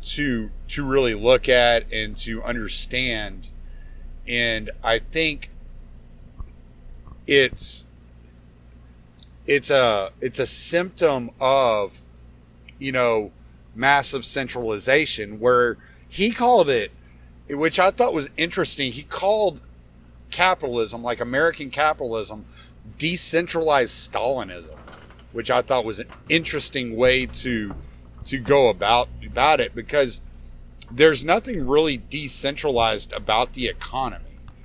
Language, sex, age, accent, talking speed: English, male, 40-59, American, 105 wpm